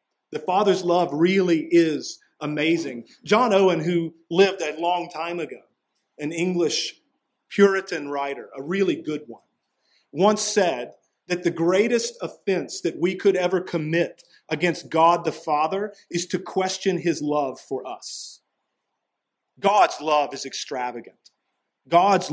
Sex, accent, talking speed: male, American, 130 wpm